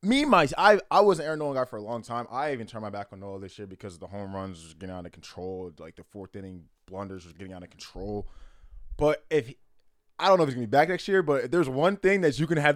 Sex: male